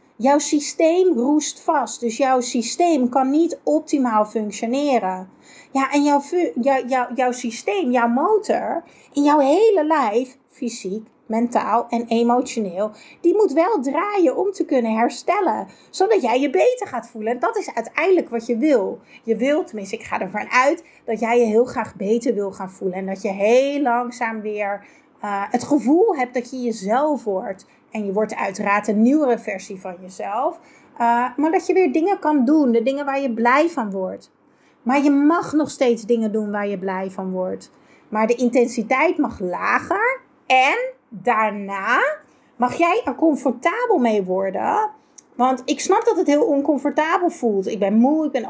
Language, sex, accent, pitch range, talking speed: Dutch, female, Dutch, 220-295 Hz, 170 wpm